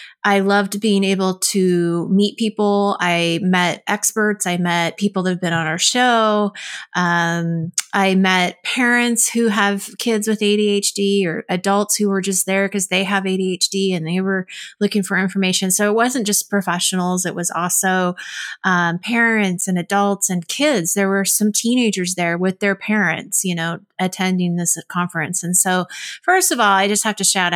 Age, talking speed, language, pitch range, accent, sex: 30-49, 175 wpm, English, 175-205 Hz, American, female